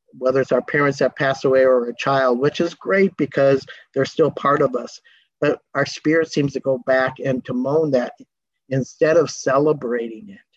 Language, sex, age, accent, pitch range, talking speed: English, male, 50-69, American, 130-155 Hz, 195 wpm